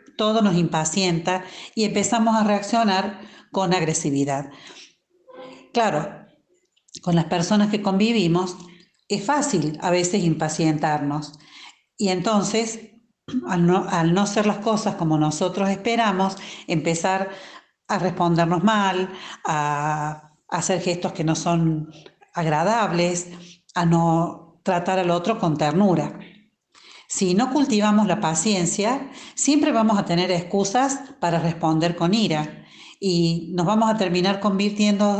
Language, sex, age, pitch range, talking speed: English, female, 40-59, 170-215 Hz, 120 wpm